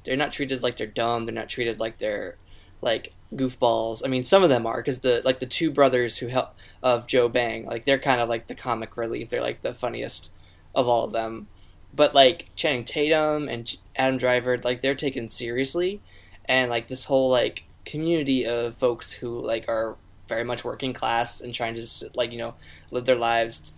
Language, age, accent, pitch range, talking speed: English, 10-29, American, 115-145 Hz, 210 wpm